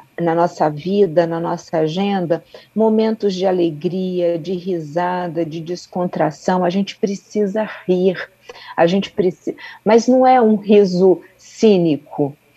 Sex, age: female, 40-59